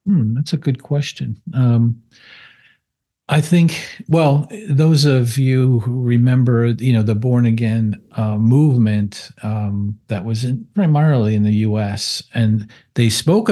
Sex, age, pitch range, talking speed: male, 50-69, 110-125 Hz, 140 wpm